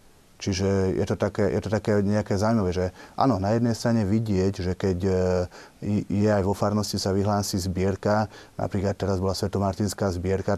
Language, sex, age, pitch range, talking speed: Slovak, male, 30-49, 95-110 Hz, 165 wpm